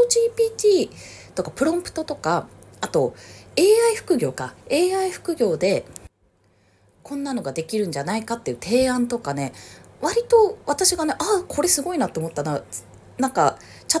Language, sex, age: Japanese, female, 20-39